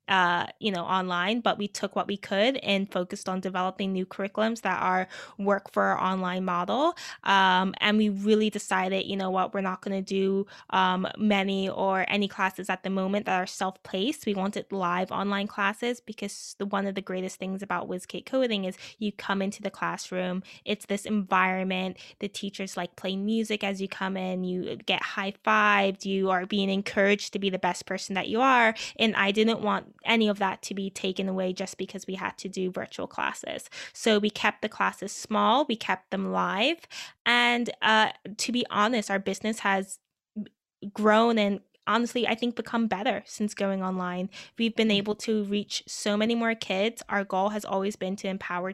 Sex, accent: female, American